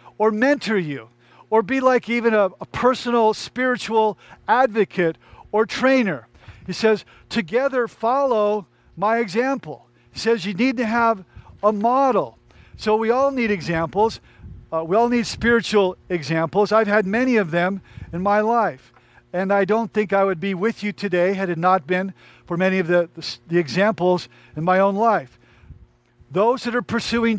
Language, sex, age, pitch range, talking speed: English, male, 50-69, 175-225 Hz, 165 wpm